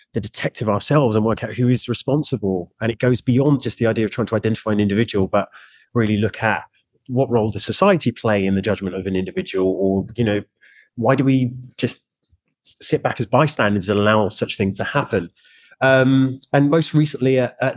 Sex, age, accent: male, 20-39, British